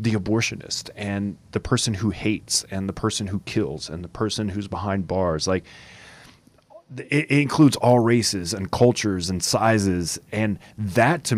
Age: 30-49